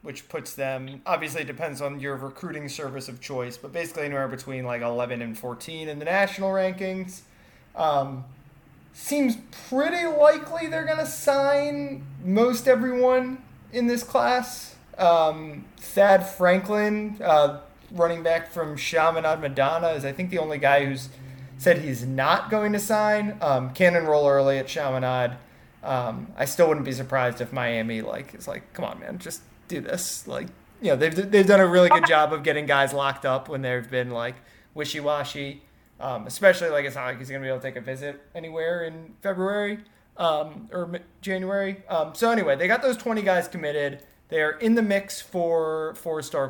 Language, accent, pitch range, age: English, American, 130-185 Hz, 20-39